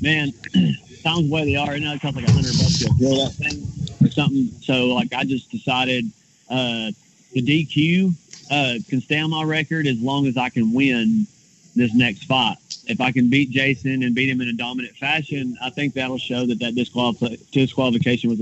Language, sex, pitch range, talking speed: English, male, 125-145 Hz, 200 wpm